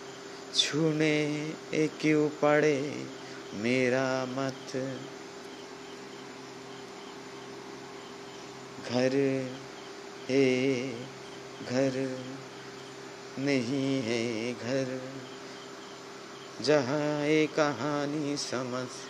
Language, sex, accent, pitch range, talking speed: Bengali, male, native, 115-140 Hz, 45 wpm